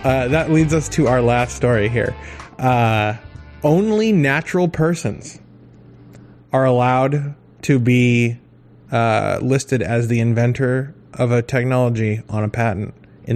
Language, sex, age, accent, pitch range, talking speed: English, male, 20-39, American, 110-135 Hz, 130 wpm